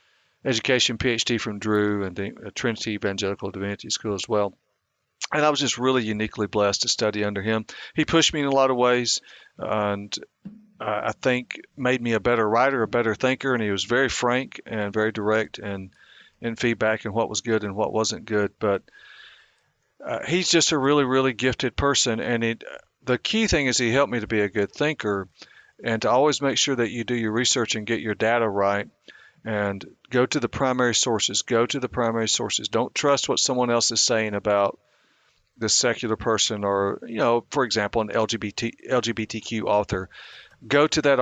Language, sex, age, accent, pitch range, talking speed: English, male, 50-69, American, 105-125 Hz, 195 wpm